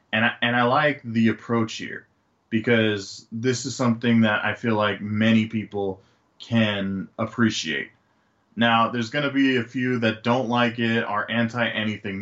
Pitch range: 110-125 Hz